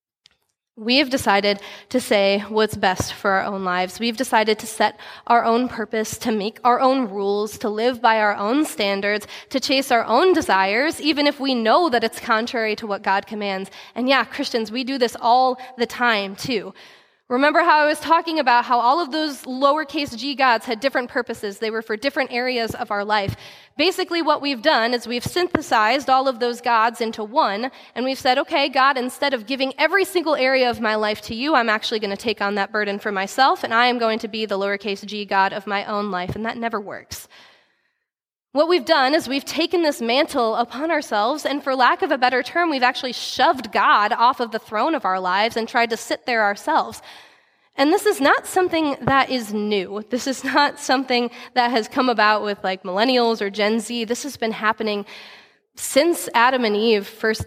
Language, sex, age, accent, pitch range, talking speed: English, female, 20-39, American, 210-270 Hz, 210 wpm